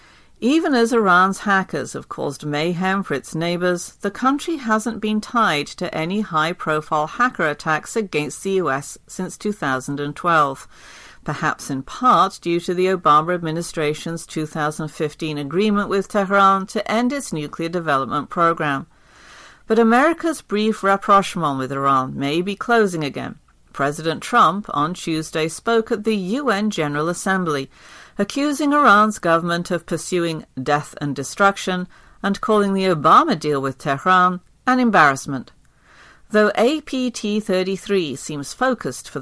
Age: 50-69